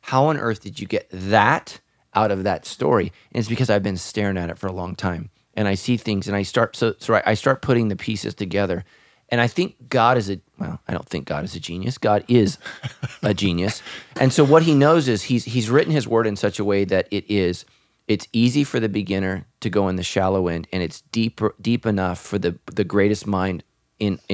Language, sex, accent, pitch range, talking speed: English, male, American, 90-115 Hz, 240 wpm